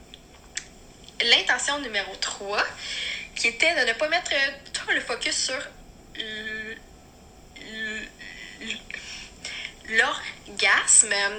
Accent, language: Canadian, French